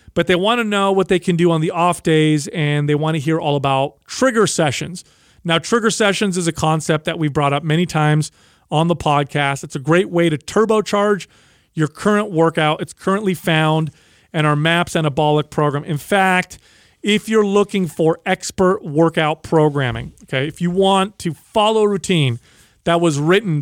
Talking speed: 190 wpm